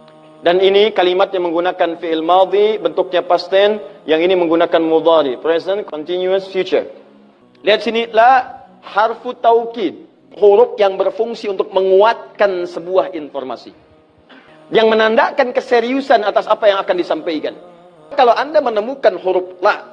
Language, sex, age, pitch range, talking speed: Indonesian, male, 40-59, 180-270 Hz, 120 wpm